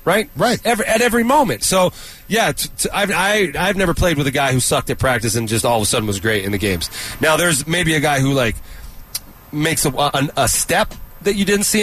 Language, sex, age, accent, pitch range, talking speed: English, male, 30-49, American, 125-175 Hz, 250 wpm